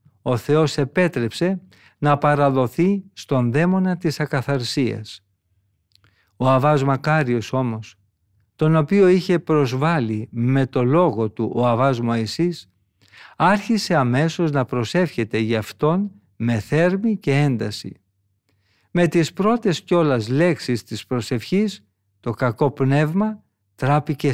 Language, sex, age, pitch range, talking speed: Greek, male, 50-69, 110-160 Hz, 110 wpm